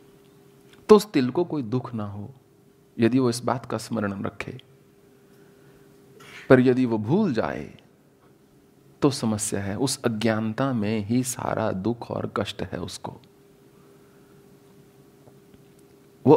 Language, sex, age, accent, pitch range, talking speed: English, male, 40-59, Indian, 105-135 Hz, 125 wpm